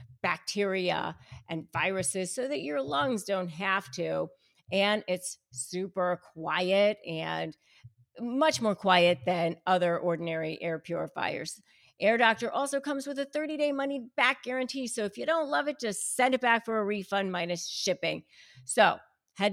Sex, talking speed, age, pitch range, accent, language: female, 150 wpm, 50-69, 170-240 Hz, American, English